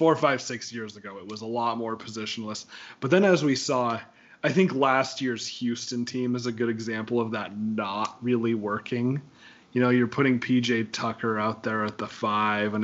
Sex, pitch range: male, 105-130 Hz